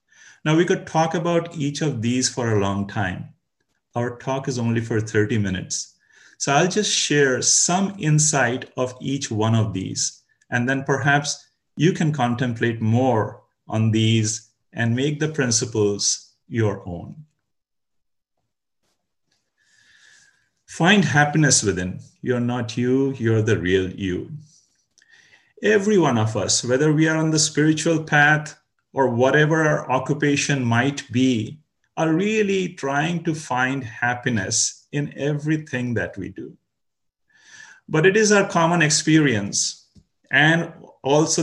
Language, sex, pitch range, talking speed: English, male, 120-155 Hz, 130 wpm